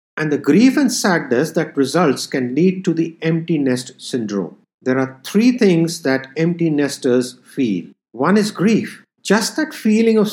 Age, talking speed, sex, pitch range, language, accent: 50-69, 170 wpm, male, 135-205 Hz, English, Indian